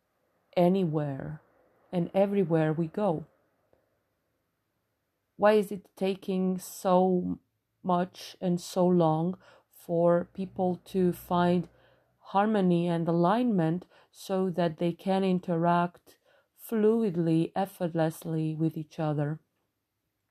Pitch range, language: 165-195 Hz, English